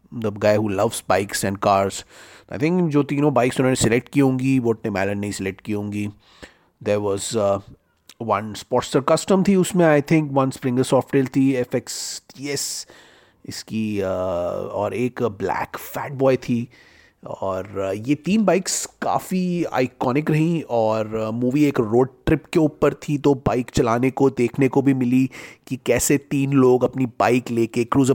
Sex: male